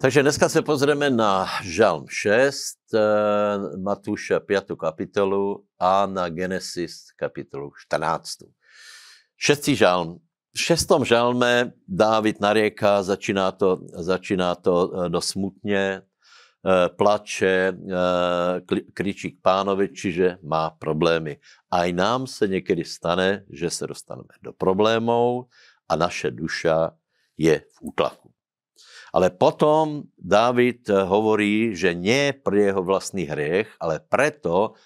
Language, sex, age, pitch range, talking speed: Slovak, male, 60-79, 90-110 Hz, 110 wpm